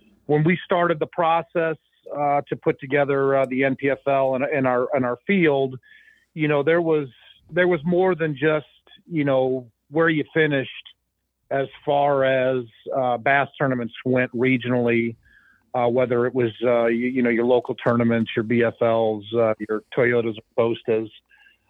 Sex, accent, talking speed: male, American, 165 wpm